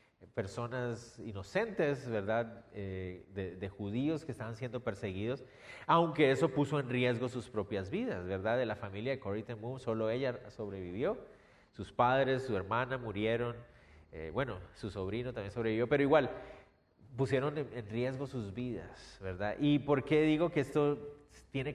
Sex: male